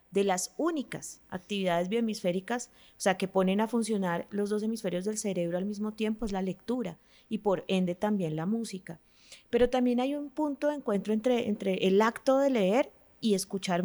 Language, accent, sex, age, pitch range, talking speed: Spanish, Colombian, female, 30-49, 185-225 Hz, 185 wpm